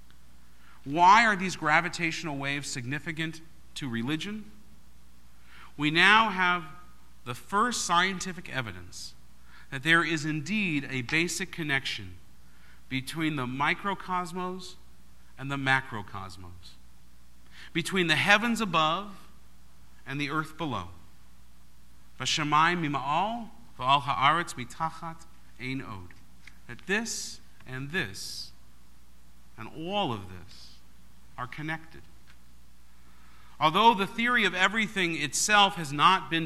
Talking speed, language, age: 90 wpm, English, 50-69